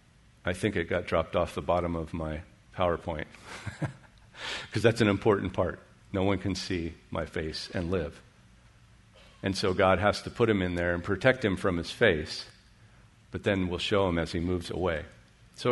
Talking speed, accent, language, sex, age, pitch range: 185 wpm, American, English, male, 50-69, 100-125 Hz